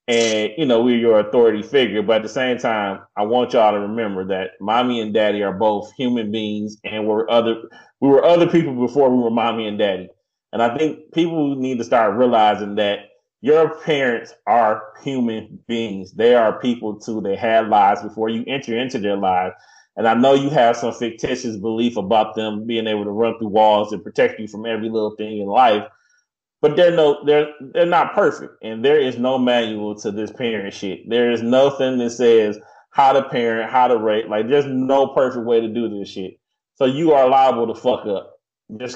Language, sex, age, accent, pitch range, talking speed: English, male, 30-49, American, 105-130 Hz, 205 wpm